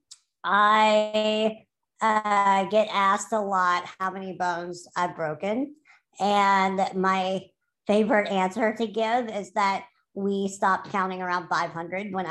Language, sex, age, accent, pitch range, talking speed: English, male, 40-59, American, 180-215 Hz, 120 wpm